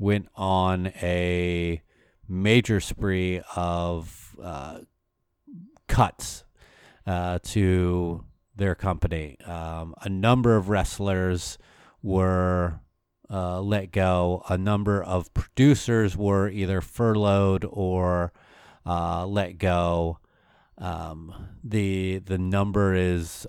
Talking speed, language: 95 wpm, English